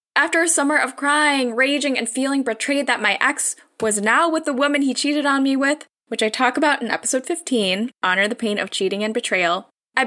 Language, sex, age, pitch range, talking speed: English, female, 10-29, 220-285 Hz, 220 wpm